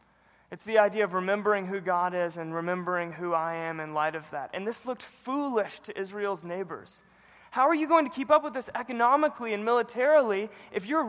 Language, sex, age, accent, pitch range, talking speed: English, male, 20-39, American, 180-245 Hz, 205 wpm